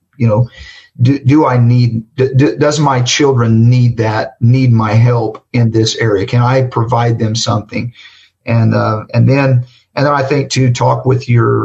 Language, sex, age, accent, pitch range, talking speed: English, male, 50-69, American, 115-130 Hz, 180 wpm